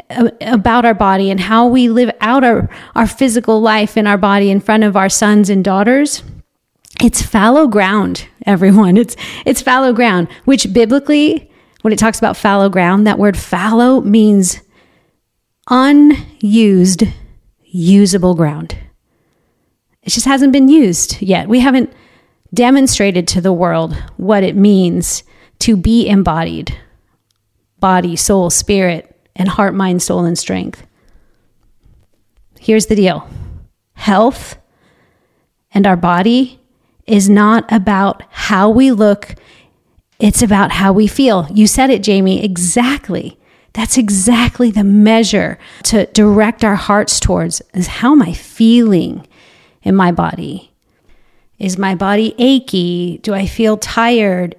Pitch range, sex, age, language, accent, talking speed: 185-235 Hz, female, 40-59, English, American, 130 wpm